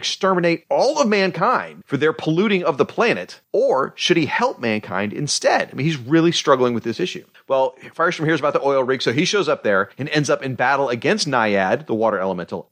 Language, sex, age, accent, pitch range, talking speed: English, male, 40-59, American, 120-155 Hz, 215 wpm